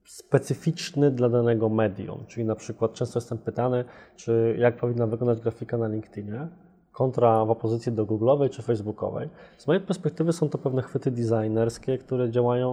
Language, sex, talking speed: Polish, male, 160 wpm